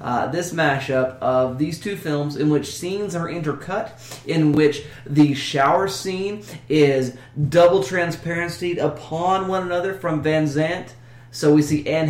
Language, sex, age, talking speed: English, male, 30-49, 150 wpm